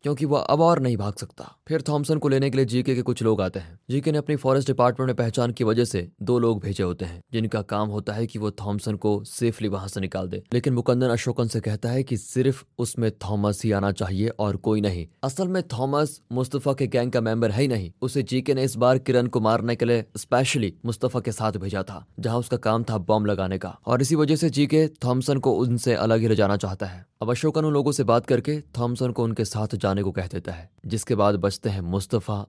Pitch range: 105-125 Hz